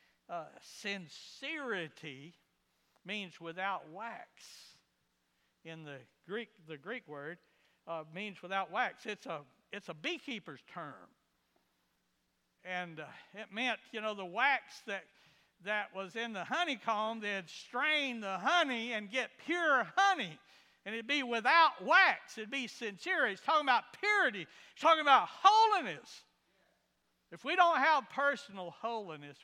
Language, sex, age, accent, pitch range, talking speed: English, male, 60-79, American, 180-275 Hz, 135 wpm